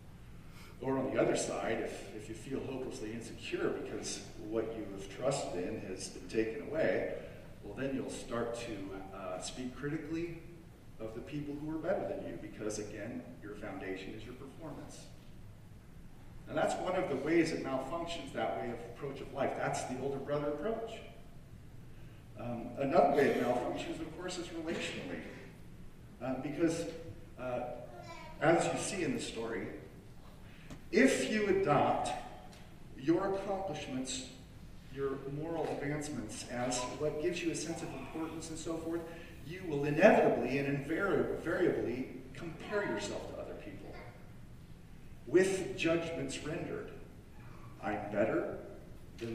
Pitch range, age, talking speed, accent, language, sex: 120-165 Hz, 40-59, 140 wpm, American, English, male